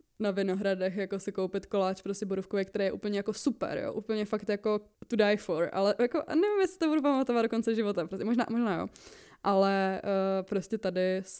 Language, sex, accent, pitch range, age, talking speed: Czech, female, native, 185-210 Hz, 20-39, 205 wpm